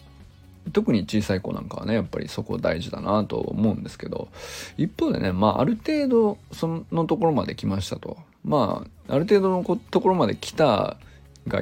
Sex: male